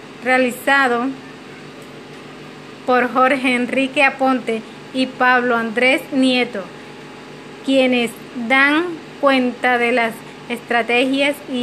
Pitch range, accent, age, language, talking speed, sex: 235-265 Hz, American, 30-49, Spanish, 85 wpm, female